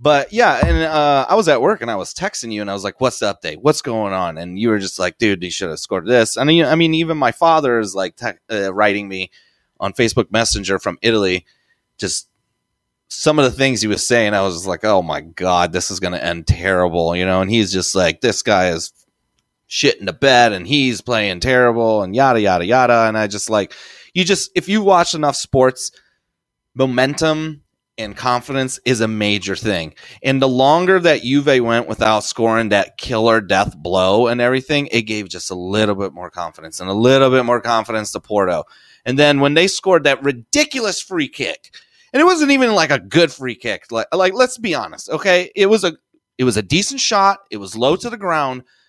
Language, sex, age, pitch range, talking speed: English, male, 30-49, 105-160 Hz, 215 wpm